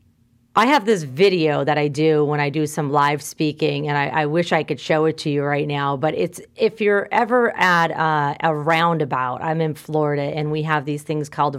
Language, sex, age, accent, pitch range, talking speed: English, female, 30-49, American, 150-200 Hz, 225 wpm